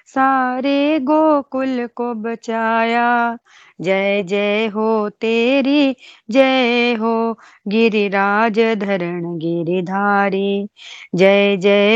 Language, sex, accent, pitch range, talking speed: Hindi, female, native, 200-245 Hz, 75 wpm